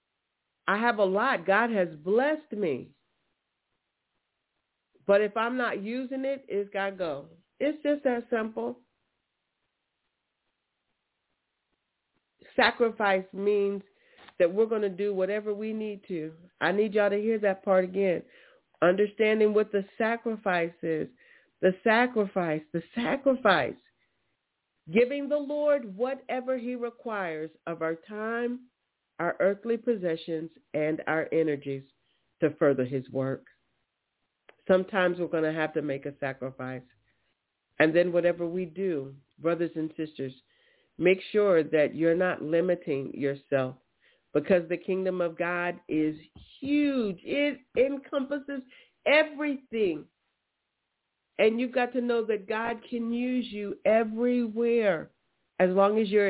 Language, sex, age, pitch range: English, female, 40-59, 165-235 Hz